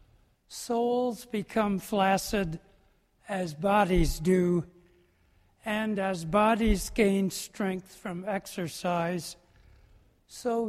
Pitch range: 170-210 Hz